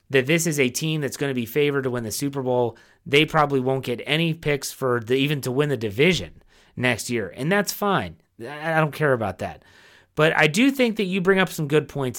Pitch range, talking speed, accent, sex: 115-150 Hz, 235 wpm, American, male